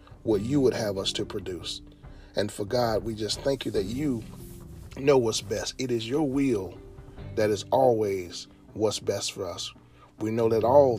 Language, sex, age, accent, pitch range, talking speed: English, male, 40-59, American, 100-125 Hz, 185 wpm